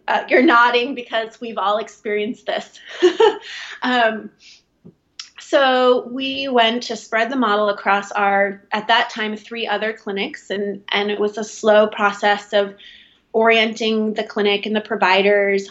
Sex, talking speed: female, 145 wpm